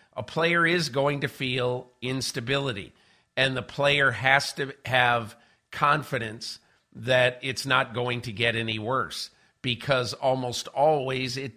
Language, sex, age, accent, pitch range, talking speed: English, male, 50-69, American, 120-145 Hz, 135 wpm